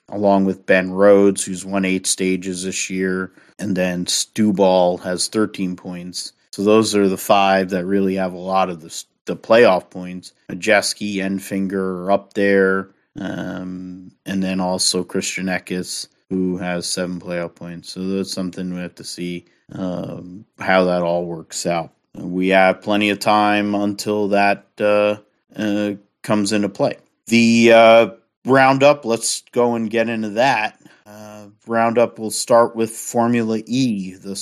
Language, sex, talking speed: English, male, 160 wpm